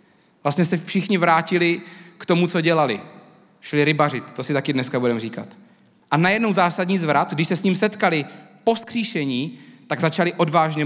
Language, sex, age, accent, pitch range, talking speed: Czech, male, 30-49, native, 140-180 Hz, 165 wpm